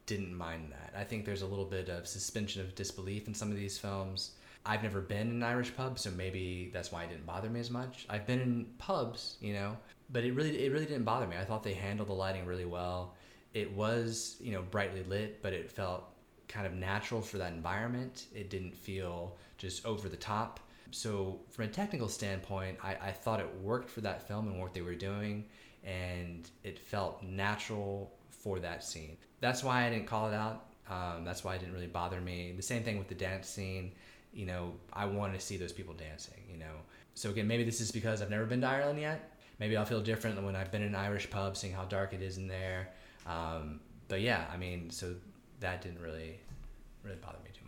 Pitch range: 90-115 Hz